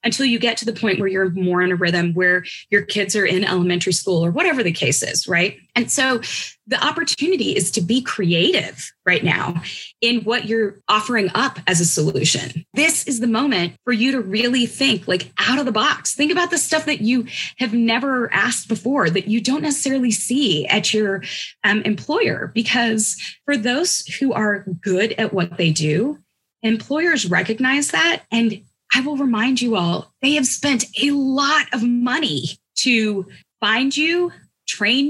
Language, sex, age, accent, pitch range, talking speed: English, female, 20-39, American, 195-270 Hz, 180 wpm